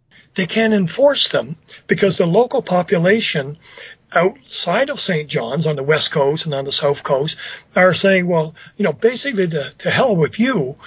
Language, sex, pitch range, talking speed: English, male, 160-205 Hz, 175 wpm